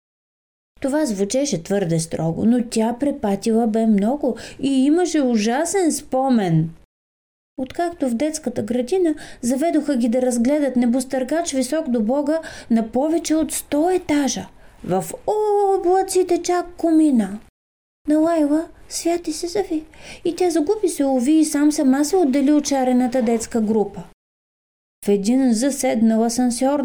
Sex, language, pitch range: female, Bulgarian, 205-310 Hz